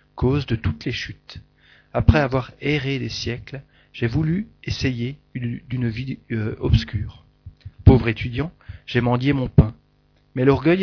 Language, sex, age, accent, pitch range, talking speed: French, male, 40-59, French, 110-135 Hz, 145 wpm